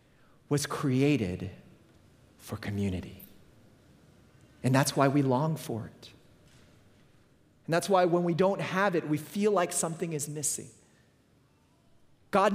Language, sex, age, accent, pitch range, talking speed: English, male, 40-59, American, 125-190 Hz, 125 wpm